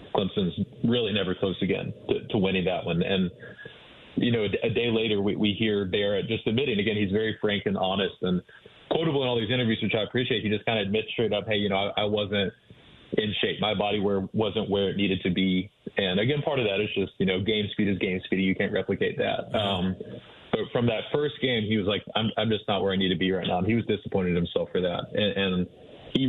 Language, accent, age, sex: English, American, 20-39, male